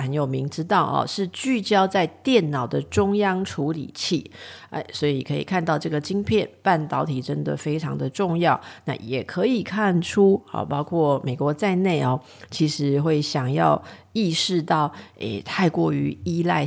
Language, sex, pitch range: Chinese, female, 140-190 Hz